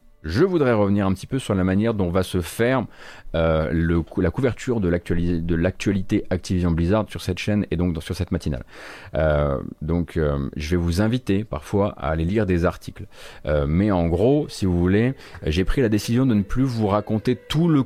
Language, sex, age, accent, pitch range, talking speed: French, male, 30-49, French, 85-110 Hz, 215 wpm